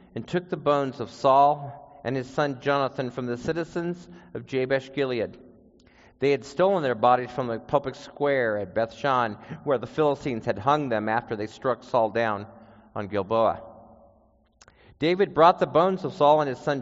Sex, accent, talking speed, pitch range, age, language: male, American, 170 wpm, 115-155 Hz, 50-69, English